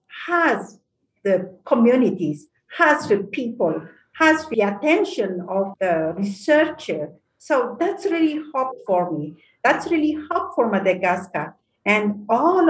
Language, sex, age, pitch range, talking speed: English, female, 50-69, 190-300 Hz, 120 wpm